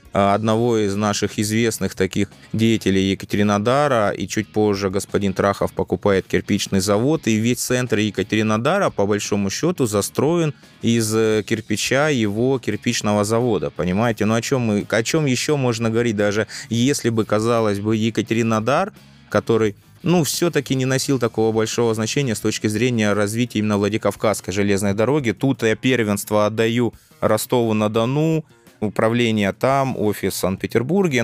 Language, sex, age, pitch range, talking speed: Russian, male, 20-39, 105-125 Hz, 135 wpm